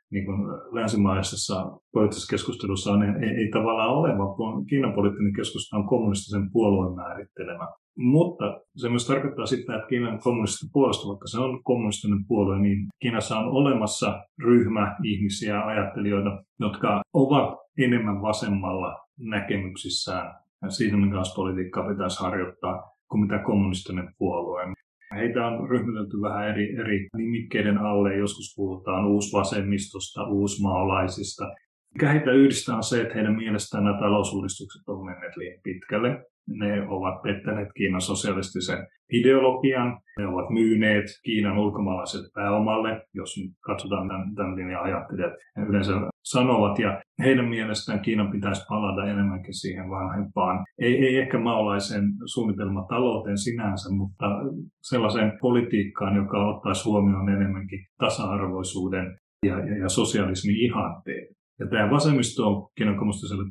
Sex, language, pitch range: male, Finnish, 100-115 Hz